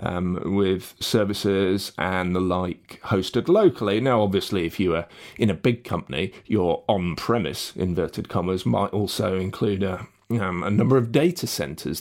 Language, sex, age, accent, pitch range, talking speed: English, male, 30-49, British, 100-120 Hz, 155 wpm